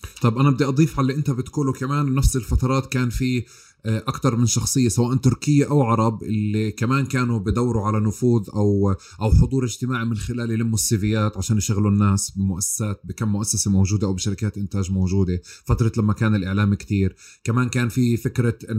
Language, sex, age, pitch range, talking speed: Arabic, male, 30-49, 100-125 Hz, 170 wpm